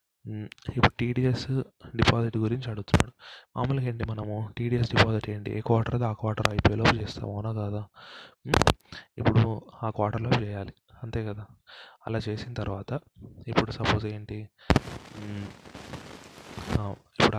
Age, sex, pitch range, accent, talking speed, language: 20-39, male, 105-115 Hz, native, 105 wpm, Telugu